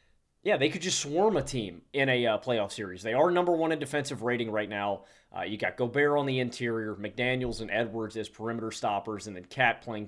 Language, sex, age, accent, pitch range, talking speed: English, male, 30-49, American, 115-150 Hz, 225 wpm